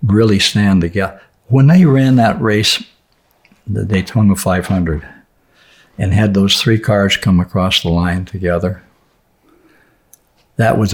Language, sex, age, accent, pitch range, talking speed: English, male, 60-79, American, 90-105 Hz, 125 wpm